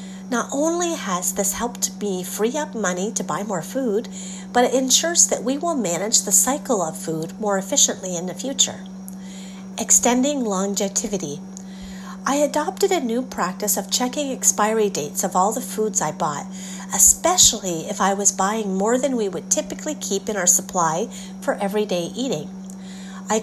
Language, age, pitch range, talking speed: English, 30-49, 190-220 Hz, 165 wpm